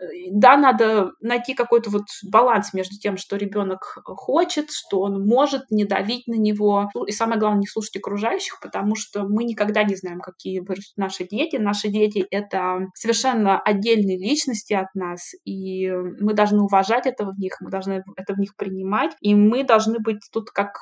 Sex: female